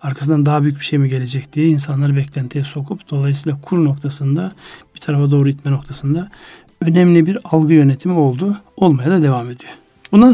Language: Turkish